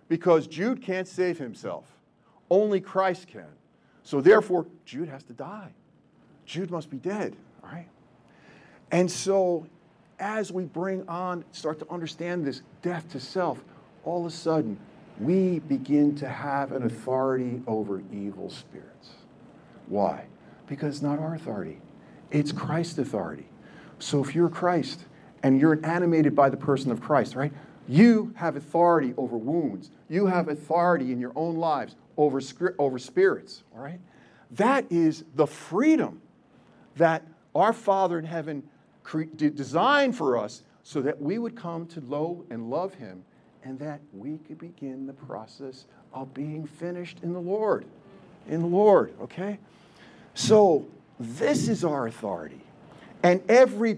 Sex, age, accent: male, 50-69, American